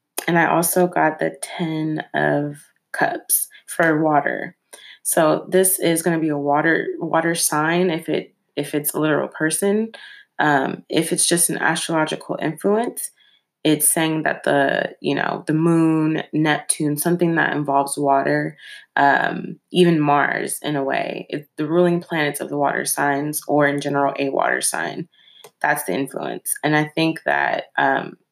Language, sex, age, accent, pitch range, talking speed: English, female, 20-39, American, 145-175 Hz, 160 wpm